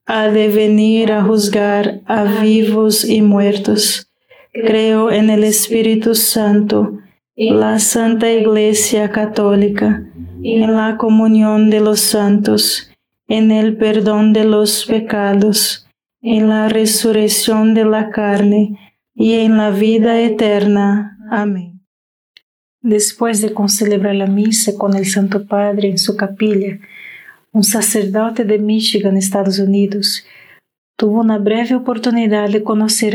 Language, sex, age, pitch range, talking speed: Spanish, female, 40-59, 205-220 Hz, 120 wpm